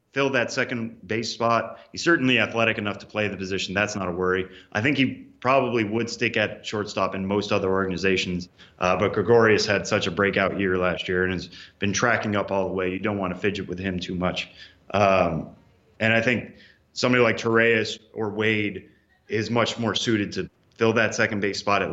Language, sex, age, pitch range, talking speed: English, male, 30-49, 95-115 Hz, 210 wpm